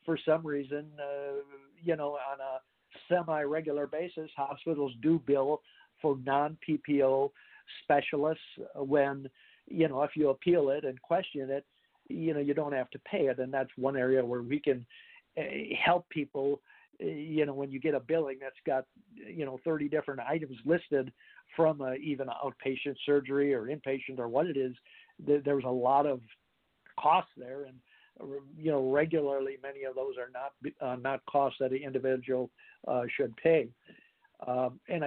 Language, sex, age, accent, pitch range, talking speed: English, male, 50-69, American, 130-150 Hz, 165 wpm